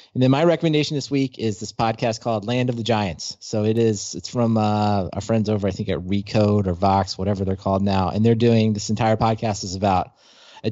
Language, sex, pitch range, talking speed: English, male, 110-135 Hz, 235 wpm